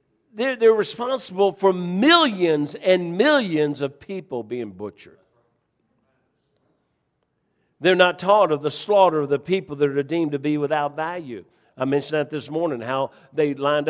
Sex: male